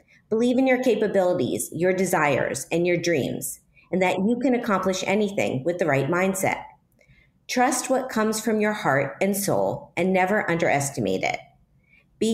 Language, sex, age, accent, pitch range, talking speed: English, female, 40-59, American, 165-215 Hz, 155 wpm